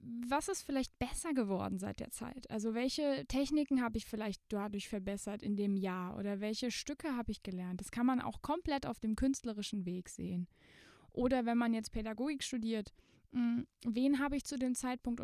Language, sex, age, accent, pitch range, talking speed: German, female, 20-39, German, 205-270 Hz, 185 wpm